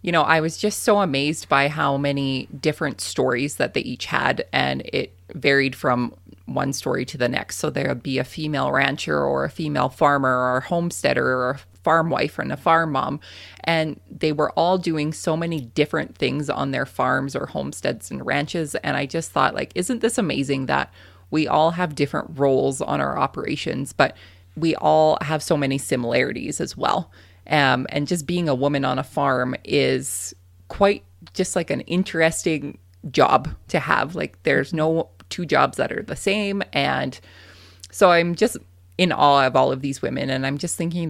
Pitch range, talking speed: 125-165 Hz, 190 wpm